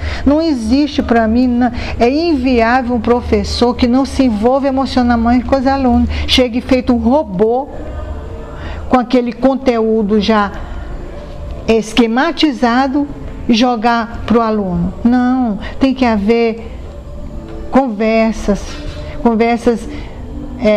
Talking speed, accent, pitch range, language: 110 wpm, Brazilian, 215-255 Hz, Portuguese